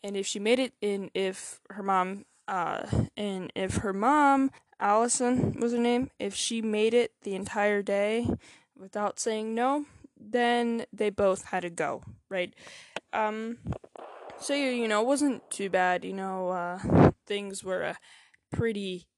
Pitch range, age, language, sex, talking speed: 190-230 Hz, 10-29, English, female, 155 wpm